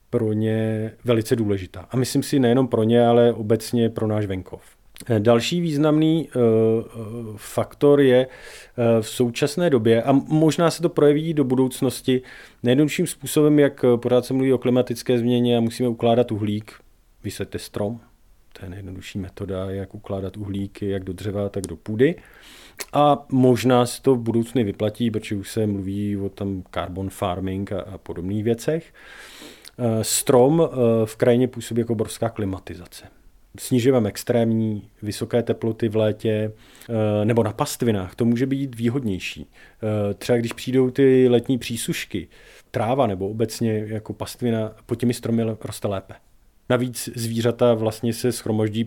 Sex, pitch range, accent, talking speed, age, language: male, 105-125 Hz, native, 140 wpm, 40-59, Czech